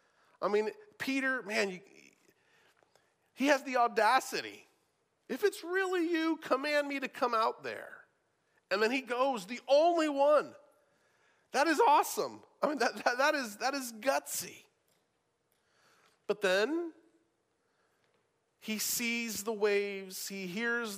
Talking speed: 130 wpm